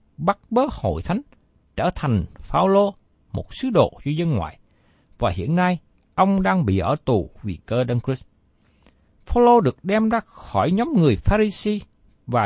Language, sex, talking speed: Vietnamese, male, 175 wpm